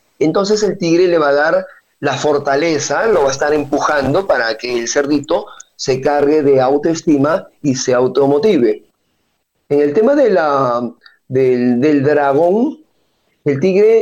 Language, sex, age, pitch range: Spanish, male, 40-59, 135-180 Hz